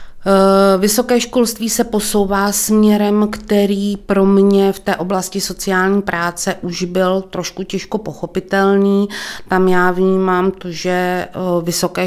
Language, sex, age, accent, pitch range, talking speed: Czech, female, 30-49, native, 175-190 Hz, 120 wpm